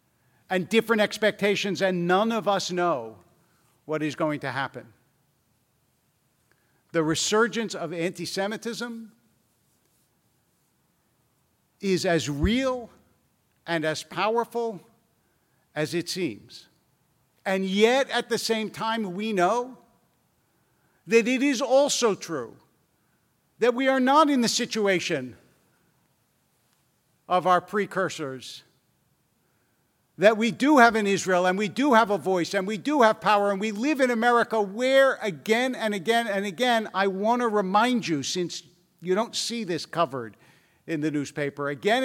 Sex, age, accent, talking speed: male, 50-69, American, 130 wpm